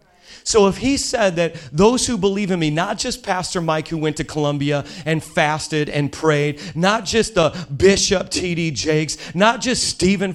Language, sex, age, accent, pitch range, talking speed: English, male, 40-59, American, 145-190 Hz, 180 wpm